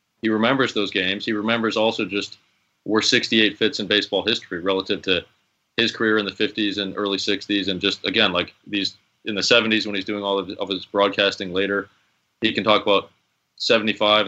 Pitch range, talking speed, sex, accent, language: 100-115 Hz, 195 wpm, male, American, English